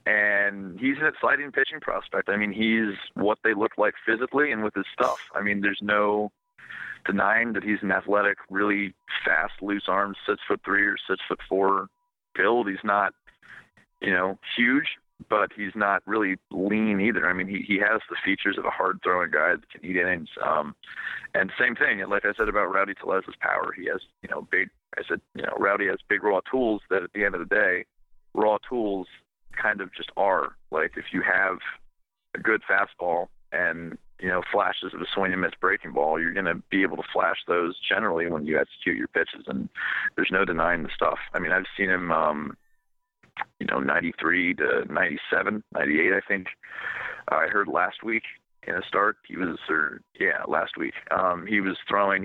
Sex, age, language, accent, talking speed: male, 40-59, English, American, 200 wpm